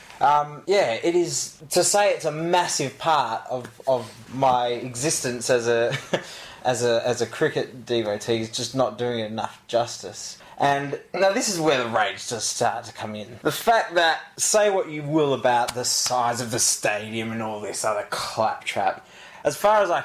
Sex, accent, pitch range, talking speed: male, Australian, 120-170 Hz, 190 wpm